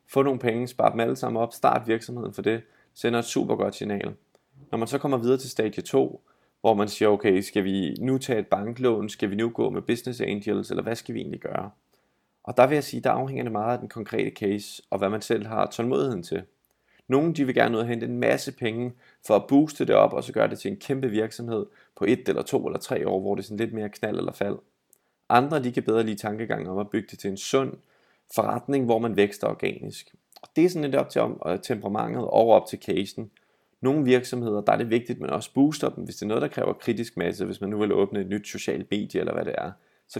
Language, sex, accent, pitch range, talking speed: Danish, male, native, 105-125 Hz, 250 wpm